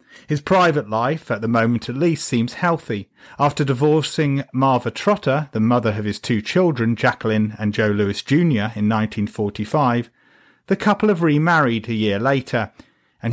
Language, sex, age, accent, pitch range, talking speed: English, male, 40-59, British, 110-145 Hz, 160 wpm